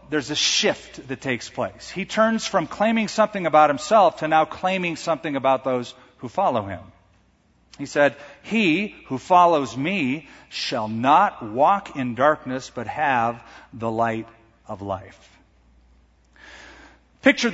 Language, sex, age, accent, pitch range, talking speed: English, male, 40-59, American, 130-195 Hz, 135 wpm